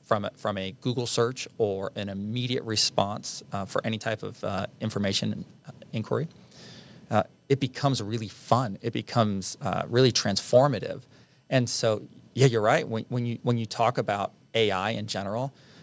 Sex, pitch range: male, 105-125 Hz